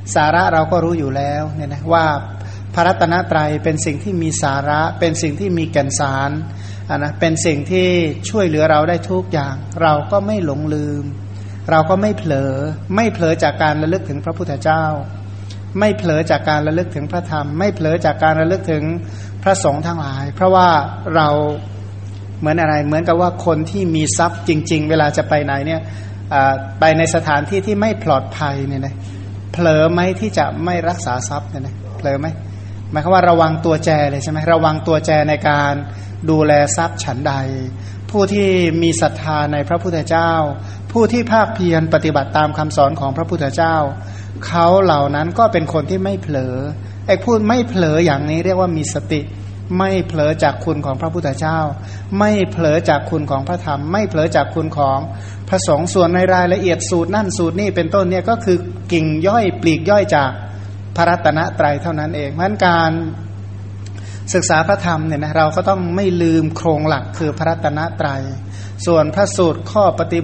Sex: male